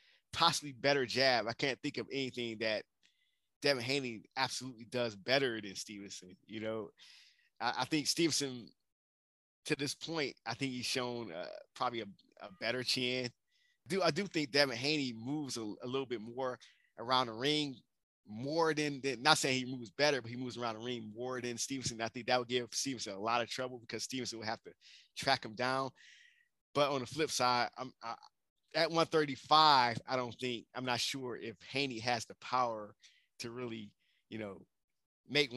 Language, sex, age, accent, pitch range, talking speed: English, male, 20-39, American, 115-140 Hz, 185 wpm